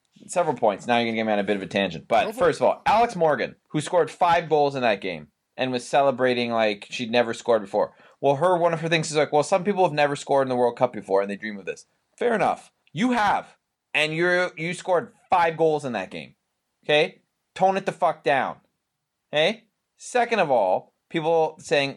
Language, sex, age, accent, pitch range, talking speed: English, male, 30-49, American, 125-170 Hz, 230 wpm